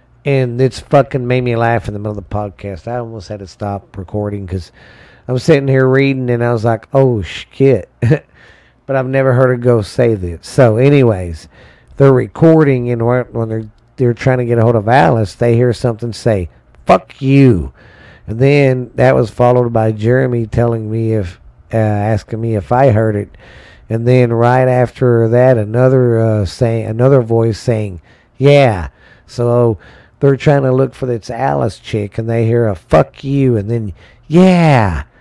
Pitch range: 105-130 Hz